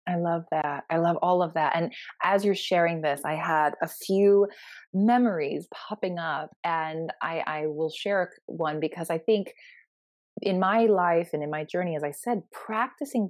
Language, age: English, 30-49